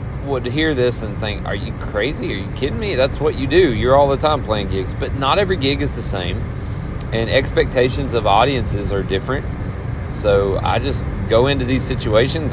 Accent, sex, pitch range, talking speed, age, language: American, male, 105-135 Hz, 200 wpm, 30-49, English